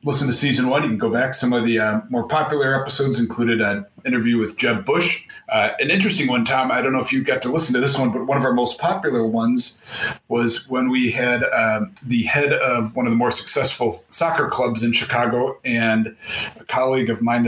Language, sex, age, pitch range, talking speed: English, male, 30-49, 115-130 Hz, 225 wpm